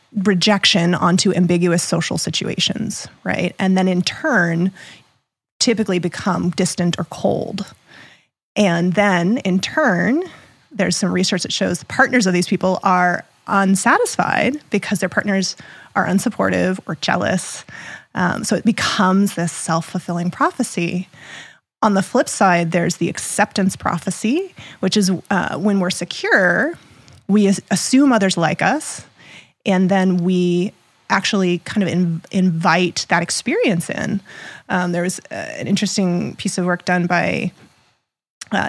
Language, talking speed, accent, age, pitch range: English, 135 wpm, American, 20-39, 175-205 Hz